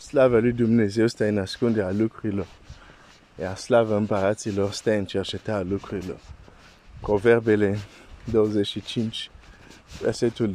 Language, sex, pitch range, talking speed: Romanian, male, 100-120 Hz, 95 wpm